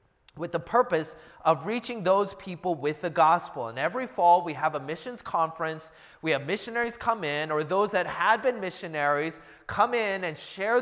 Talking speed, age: 185 wpm, 30-49